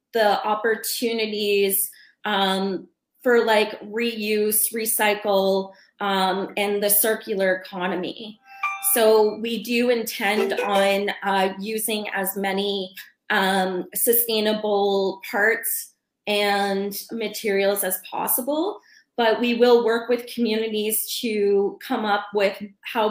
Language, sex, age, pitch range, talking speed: English, female, 20-39, 195-225 Hz, 100 wpm